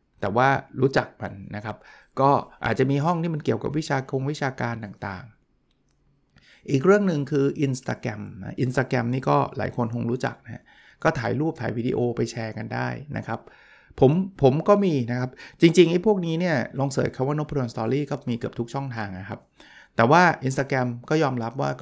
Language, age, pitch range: Thai, 60-79, 115-145 Hz